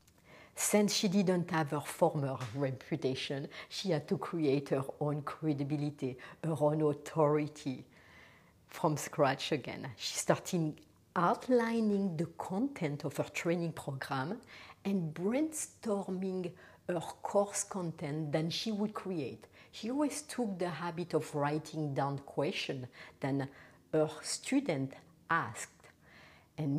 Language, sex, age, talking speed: English, female, 60-79, 115 wpm